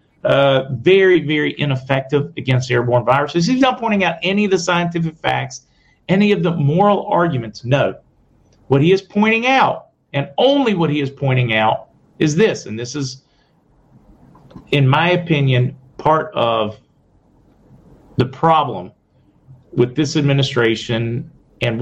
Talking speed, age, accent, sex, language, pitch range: 140 wpm, 40-59, American, male, English, 130-170 Hz